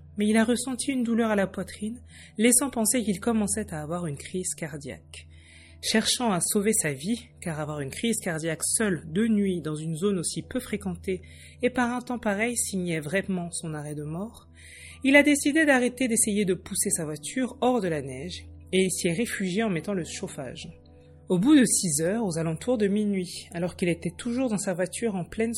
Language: French